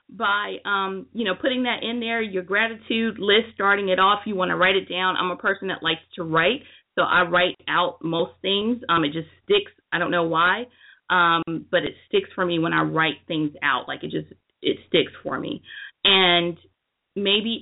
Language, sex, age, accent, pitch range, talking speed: English, female, 30-49, American, 170-220 Hz, 210 wpm